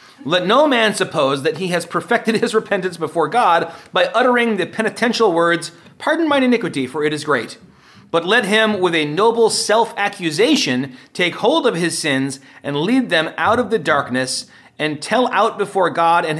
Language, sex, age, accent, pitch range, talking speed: English, male, 30-49, American, 125-180 Hz, 180 wpm